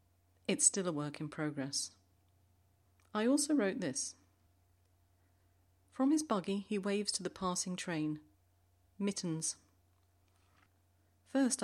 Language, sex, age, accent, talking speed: English, female, 40-59, British, 110 wpm